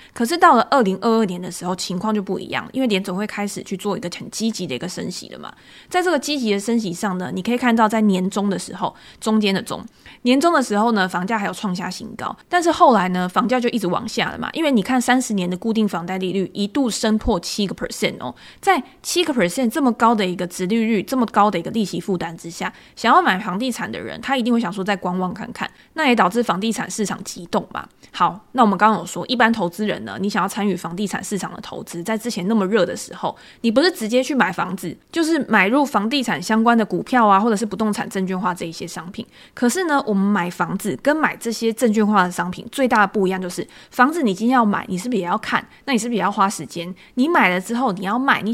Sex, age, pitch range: female, 20-39, 185-240 Hz